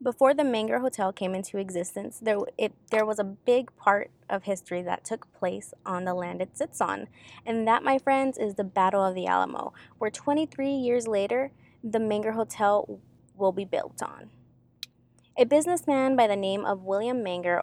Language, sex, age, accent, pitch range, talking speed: English, female, 20-39, American, 185-235 Hz, 185 wpm